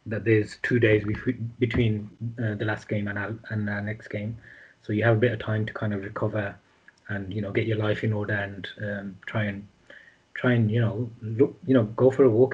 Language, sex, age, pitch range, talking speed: English, male, 20-39, 105-115 Hz, 235 wpm